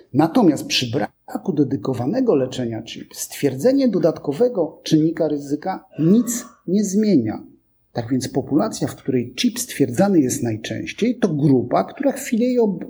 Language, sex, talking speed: Polish, male, 125 wpm